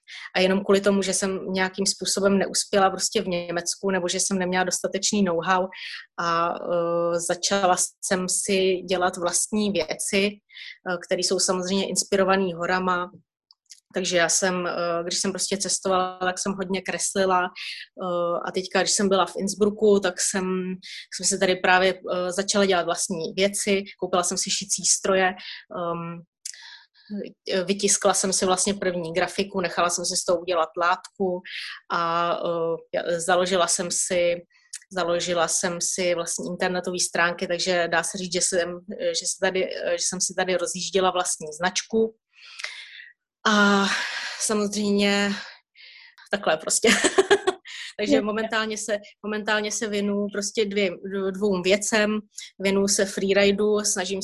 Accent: native